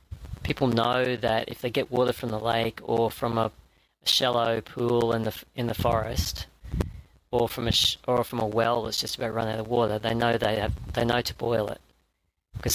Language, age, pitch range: English, 40-59, 105-125 Hz